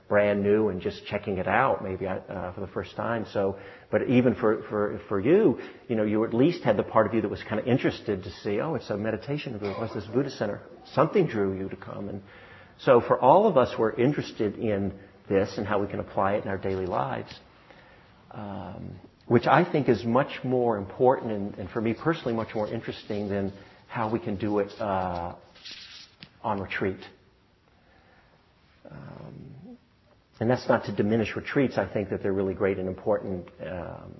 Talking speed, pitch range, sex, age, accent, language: 195 wpm, 95-115 Hz, male, 50-69, American, English